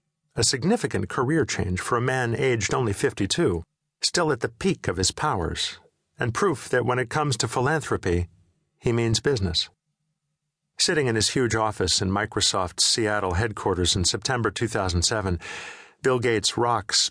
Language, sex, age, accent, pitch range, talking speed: English, male, 50-69, American, 100-150 Hz, 150 wpm